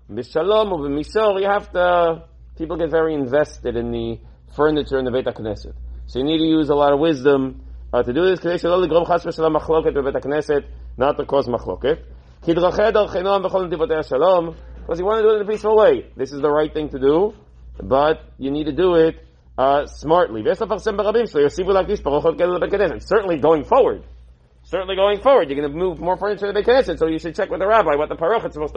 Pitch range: 130-185 Hz